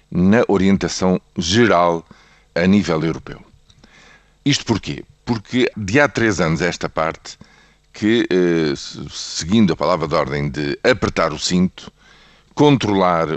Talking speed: 120 wpm